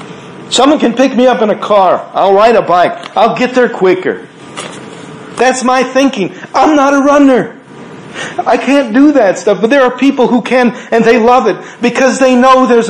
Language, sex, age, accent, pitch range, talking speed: English, male, 50-69, American, 185-250 Hz, 195 wpm